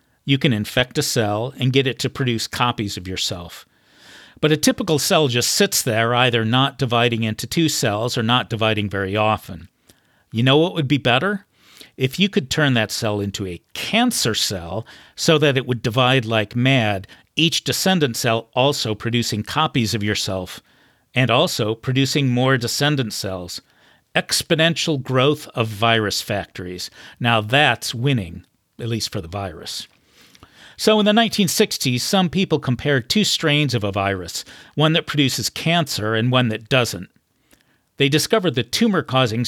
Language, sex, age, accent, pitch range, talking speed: English, male, 50-69, American, 110-150 Hz, 160 wpm